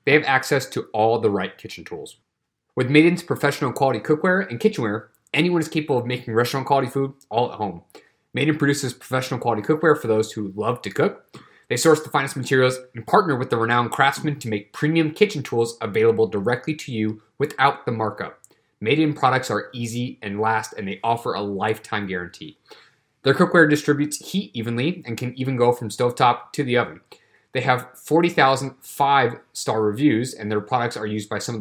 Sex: male